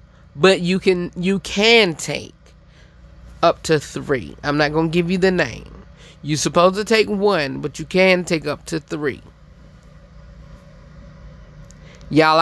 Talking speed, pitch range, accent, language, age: 140 wpm, 155-210 Hz, American, English, 20-39